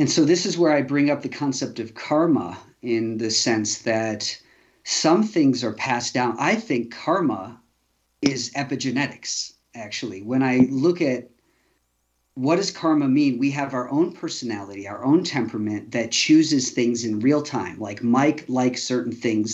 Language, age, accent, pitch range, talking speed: English, 40-59, American, 115-135 Hz, 165 wpm